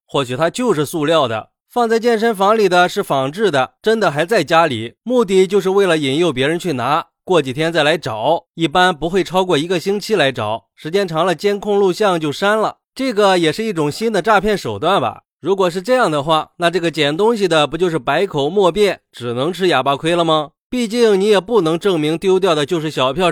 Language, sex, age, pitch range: Chinese, male, 20-39, 150-190 Hz